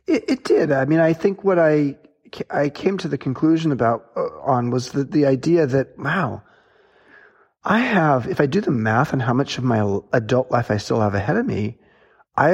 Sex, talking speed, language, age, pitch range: male, 210 wpm, English, 40-59, 120-160 Hz